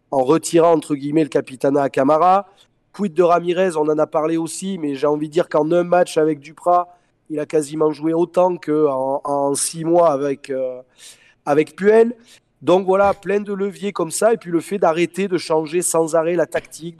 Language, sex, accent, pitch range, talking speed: French, male, French, 145-175 Hz, 200 wpm